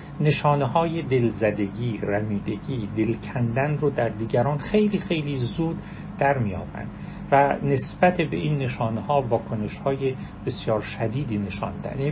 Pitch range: 110-155 Hz